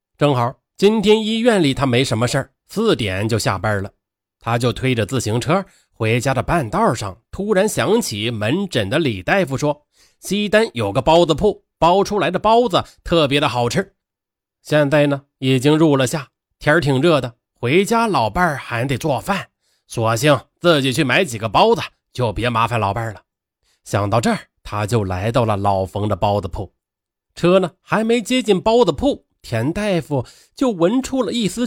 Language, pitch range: Chinese, 105-175 Hz